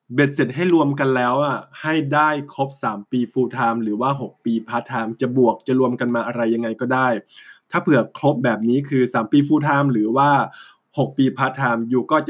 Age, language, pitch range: 20-39, Thai, 120-145 Hz